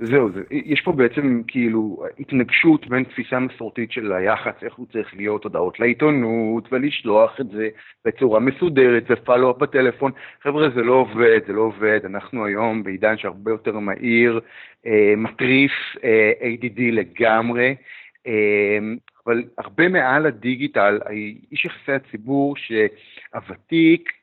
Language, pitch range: Hebrew, 110-140 Hz